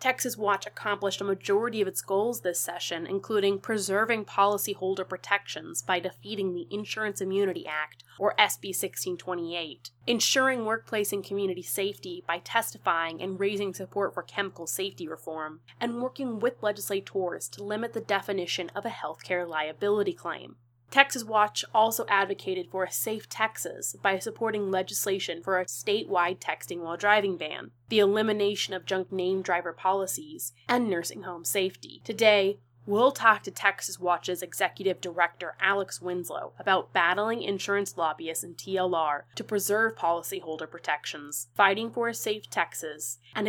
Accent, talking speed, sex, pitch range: American, 145 wpm, female, 175-210 Hz